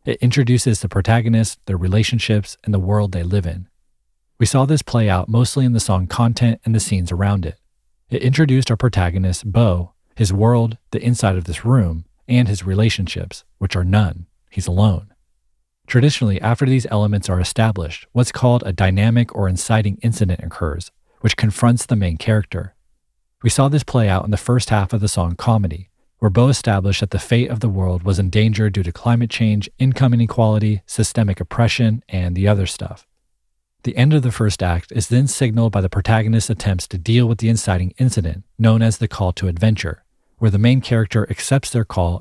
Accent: American